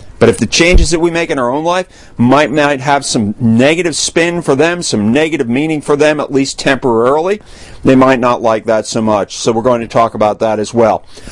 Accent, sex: American, male